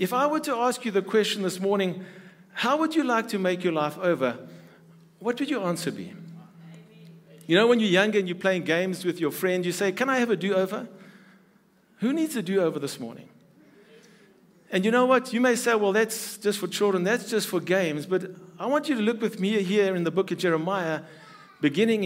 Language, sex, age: English, male, 50-69